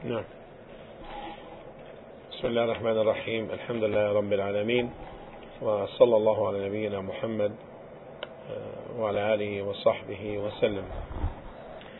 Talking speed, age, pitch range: 60 wpm, 50-69, 100-115 Hz